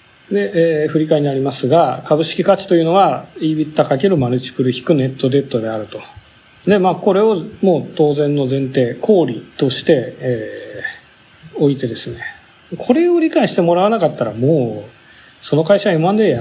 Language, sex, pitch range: Japanese, male, 135-210 Hz